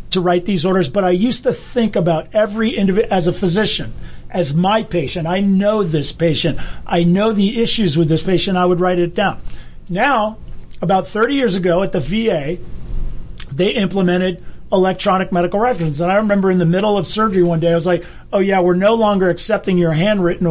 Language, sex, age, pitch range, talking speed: English, male, 40-59, 170-205 Hz, 200 wpm